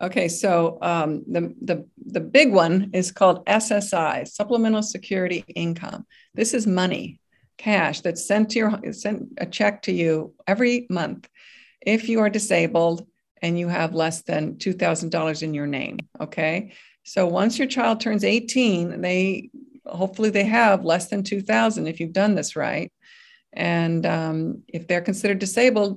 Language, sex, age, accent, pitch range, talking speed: English, female, 50-69, American, 175-225 Hz, 155 wpm